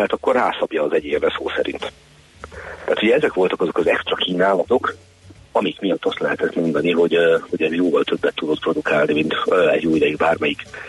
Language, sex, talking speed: Hungarian, male, 175 wpm